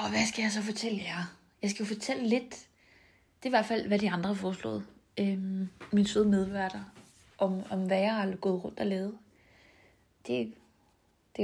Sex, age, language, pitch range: female, 30-49, Danish, 180-205 Hz